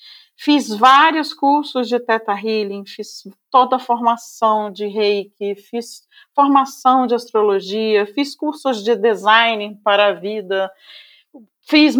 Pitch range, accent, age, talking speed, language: 230-300 Hz, Brazilian, 40-59, 115 wpm, Portuguese